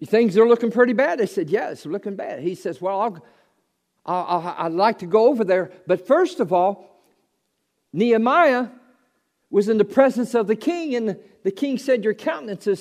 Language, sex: English, male